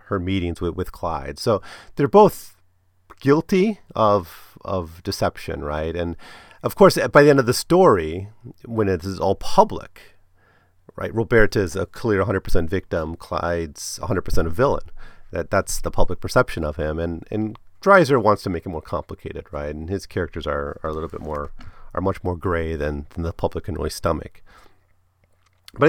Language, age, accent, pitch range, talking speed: English, 40-59, American, 85-105 Hz, 185 wpm